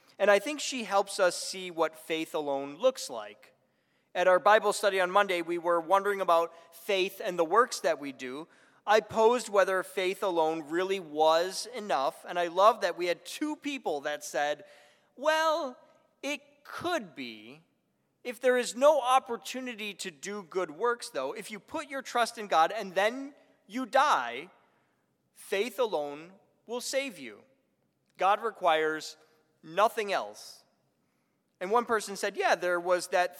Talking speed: 160 wpm